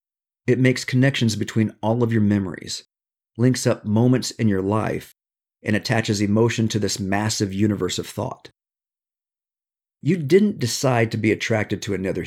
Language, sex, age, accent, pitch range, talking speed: English, male, 50-69, American, 105-125 Hz, 150 wpm